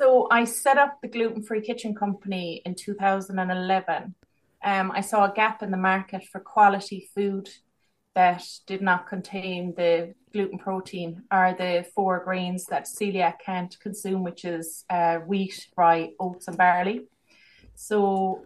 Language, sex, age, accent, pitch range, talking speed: English, female, 30-49, Irish, 180-205 Hz, 145 wpm